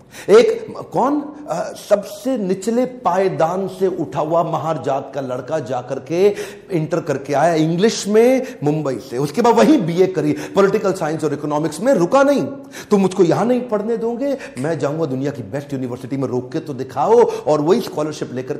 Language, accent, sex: Hindi, native, male